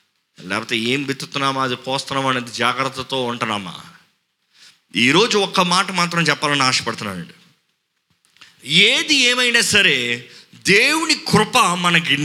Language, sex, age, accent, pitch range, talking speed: Telugu, male, 30-49, native, 165-245 Hz, 95 wpm